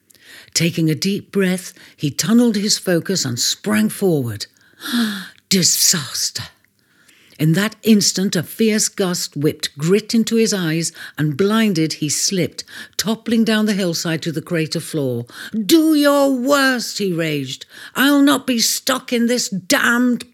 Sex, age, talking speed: female, 60-79, 140 wpm